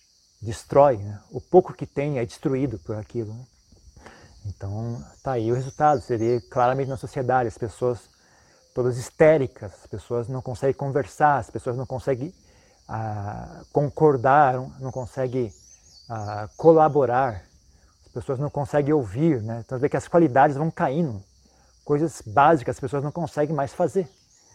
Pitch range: 115-145 Hz